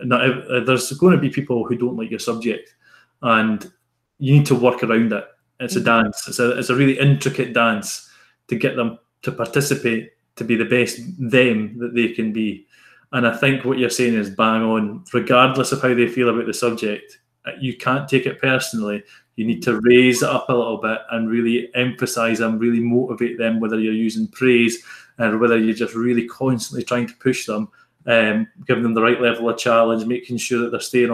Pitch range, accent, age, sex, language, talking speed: 115-130 Hz, British, 20-39, male, English, 210 wpm